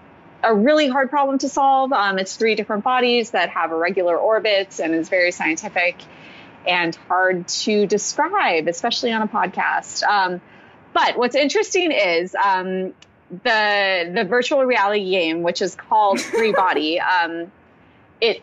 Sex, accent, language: female, American, English